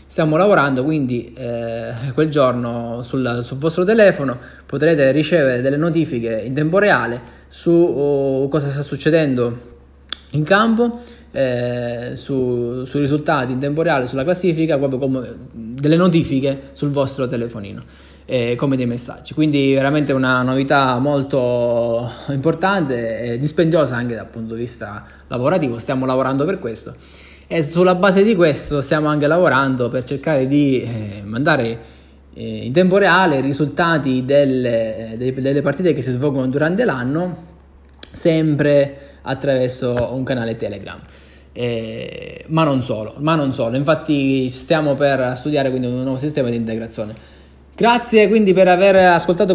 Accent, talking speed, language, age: native, 135 wpm, Italian, 20-39